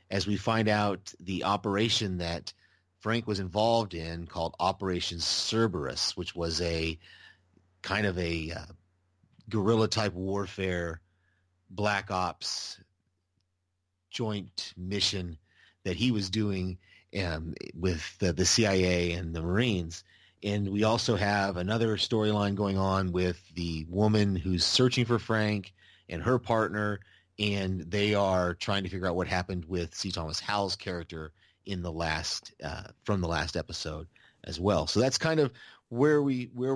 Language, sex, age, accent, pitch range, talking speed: English, male, 30-49, American, 90-105 Hz, 145 wpm